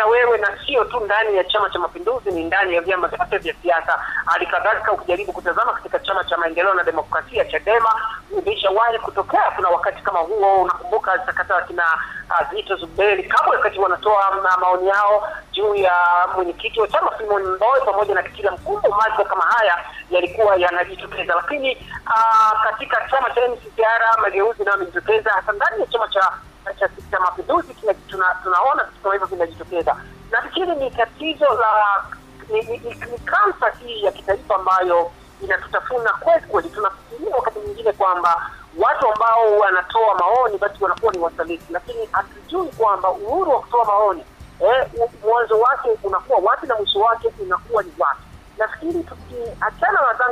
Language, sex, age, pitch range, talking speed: Swahili, male, 30-49, 190-245 Hz, 150 wpm